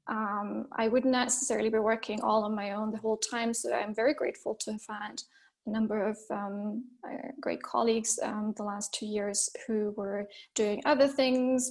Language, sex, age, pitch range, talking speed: English, female, 20-39, 220-240 Hz, 185 wpm